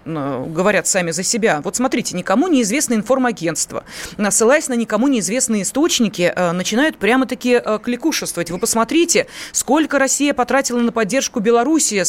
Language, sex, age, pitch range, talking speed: Russian, female, 20-39, 210-275 Hz, 125 wpm